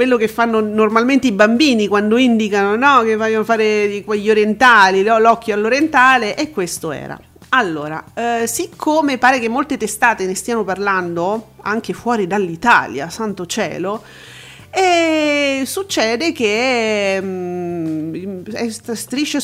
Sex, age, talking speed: female, 40-59, 115 wpm